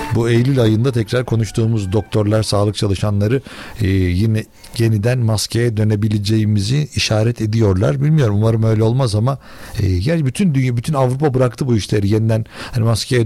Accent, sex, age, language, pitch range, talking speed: native, male, 60-79, Turkish, 110-150 Hz, 145 wpm